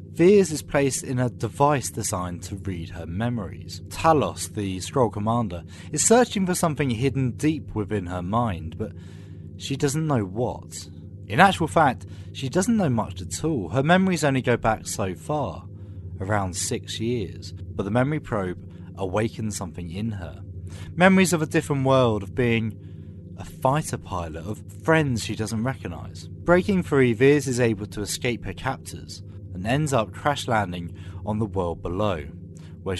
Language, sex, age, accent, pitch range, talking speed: English, male, 30-49, British, 95-140 Hz, 165 wpm